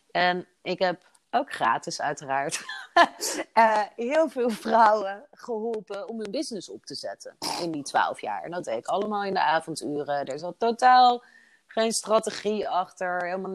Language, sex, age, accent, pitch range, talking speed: Dutch, female, 30-49, Dutch, 170-225 Hz, 160 wpm